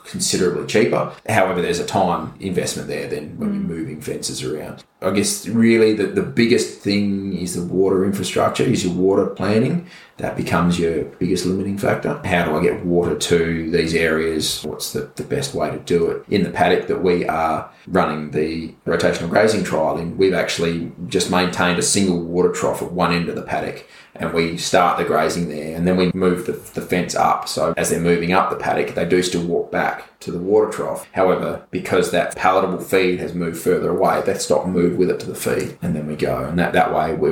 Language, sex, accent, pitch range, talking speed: English, male, Australian, 85-95 Hz, 215 wpm